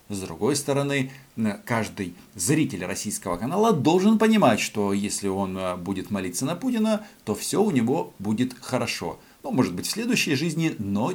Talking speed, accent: 155 wpm, native